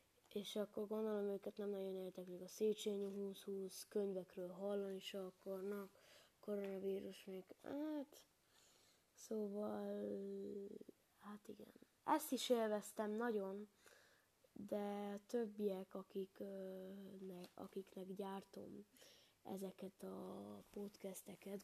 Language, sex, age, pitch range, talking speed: Hungarian, female, 20-39, 190-215 Hz, 100 wpm